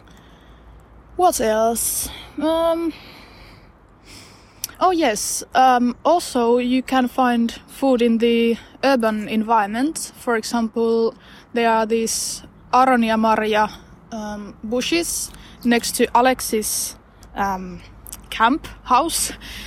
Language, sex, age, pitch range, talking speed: Finnish, female, 20-39, 220-255 Hz, 90 wpm